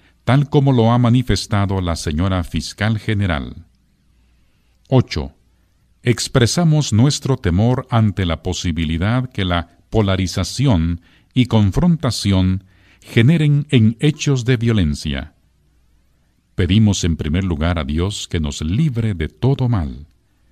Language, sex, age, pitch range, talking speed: Spanish, male, 50-69, 85-115 Hz, 110 wpm